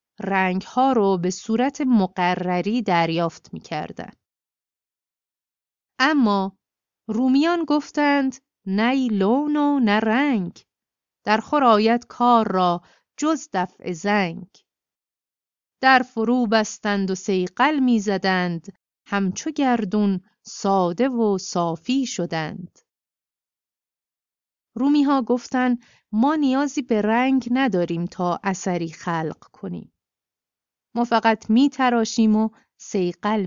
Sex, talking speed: female, 95 wpm